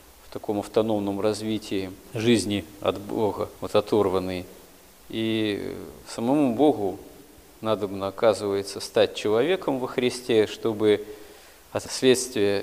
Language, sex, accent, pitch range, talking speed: Russian, male, native, 105-130 Hz, 95 wpm